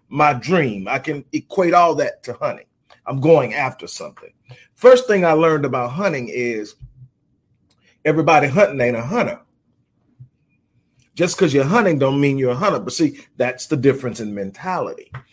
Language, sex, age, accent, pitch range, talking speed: English, male, 40-59, American, 125-175 Hz, 160 wpm